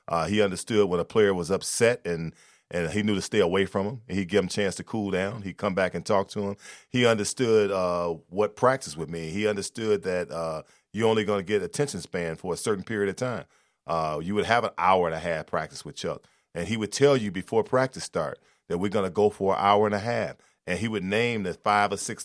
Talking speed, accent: 255 wpm, American